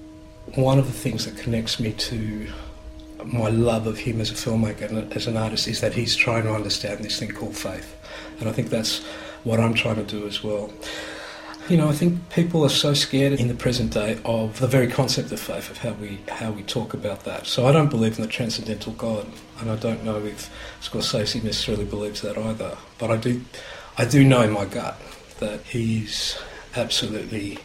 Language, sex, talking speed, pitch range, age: English, male, 210 wpm, 105-120 Hz, 50-69